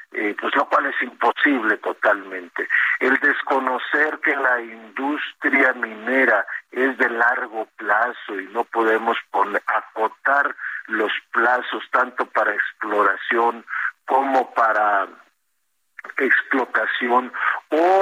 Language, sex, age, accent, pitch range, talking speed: Spanish, male, 50-69, Mexican, 115-150 Hz, 100 wpm